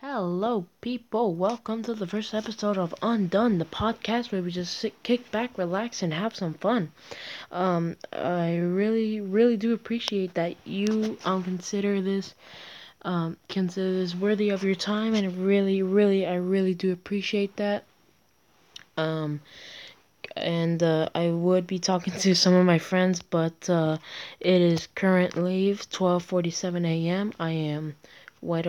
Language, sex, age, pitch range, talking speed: English, female, 10-29, 175-210 Hz, 150 wpm